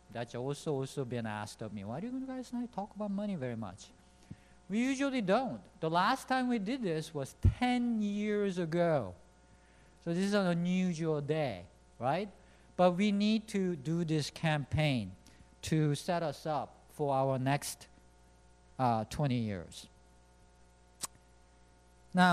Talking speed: 150 wpm